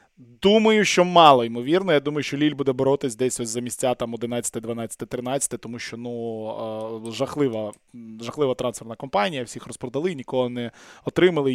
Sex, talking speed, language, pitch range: male, 155 wpm, Russian, 135-175 Hz